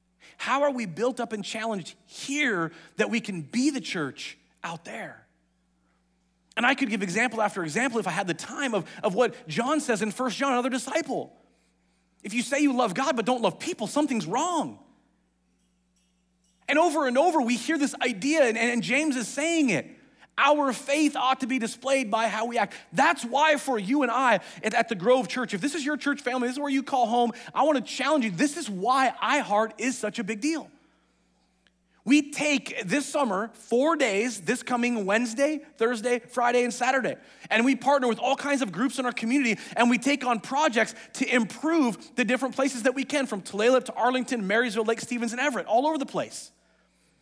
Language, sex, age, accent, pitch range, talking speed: English, male, 40-59, American, 225-280 Hz, 200 wpm